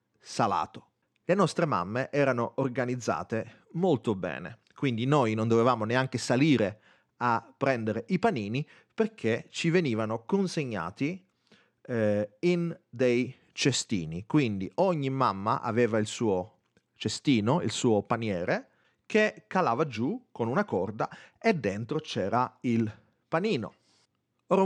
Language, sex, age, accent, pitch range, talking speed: Italian, male, 30-49, native, 110-155 Hz, 115 wpm